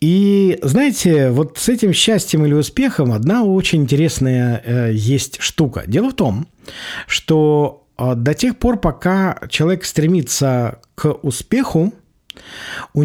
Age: 50-69